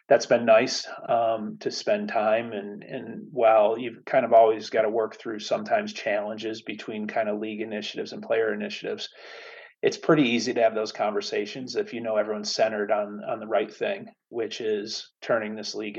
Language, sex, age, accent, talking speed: English, male, 30-49, American, 190 wpm